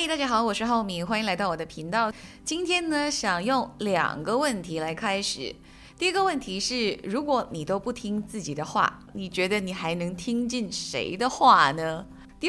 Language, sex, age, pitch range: Chinese, female, 20-39, 185-250 Hz